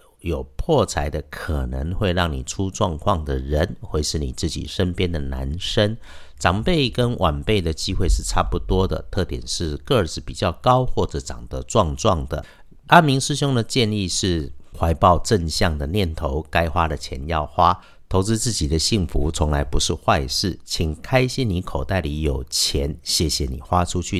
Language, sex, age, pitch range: Chinese, male, 50-69, 75-100 Hz